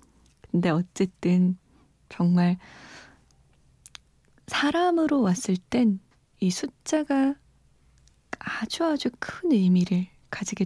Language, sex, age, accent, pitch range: Korean, female, 20-39, native, 185-260 Hz